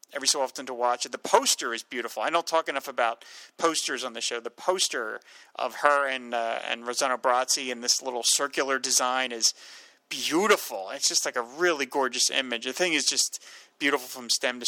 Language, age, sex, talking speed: English, 30-49, male, 205 wpm